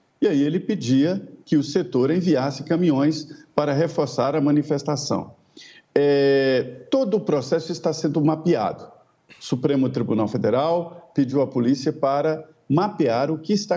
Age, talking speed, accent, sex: 50-69, 135 wpm, Brazilian, male